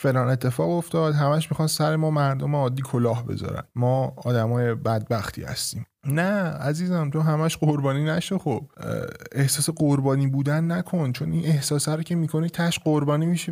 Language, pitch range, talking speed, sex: Persian, 125-165 Hz, 160 wpm, male